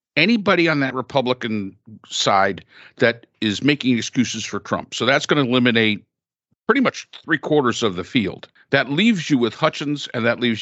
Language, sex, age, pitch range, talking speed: English, male, 50-69, 110-145 Hz, 170 wpm